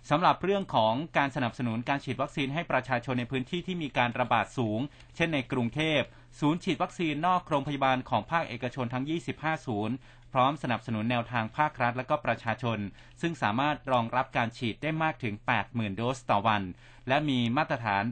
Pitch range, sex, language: 120-150 Hz, male, Thai